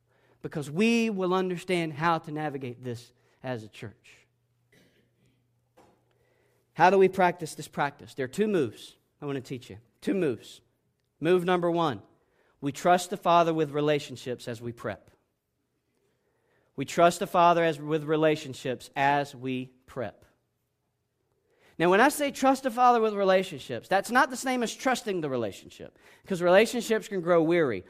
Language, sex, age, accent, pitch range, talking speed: English, male, 40-59, American, 140-225 Hz, 155 wpm